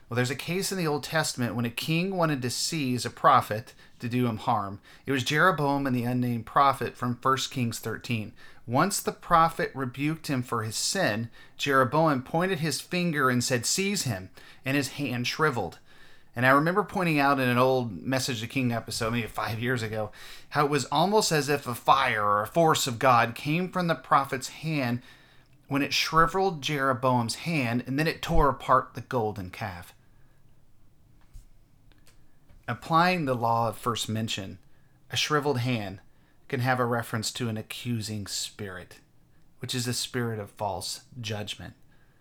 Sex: male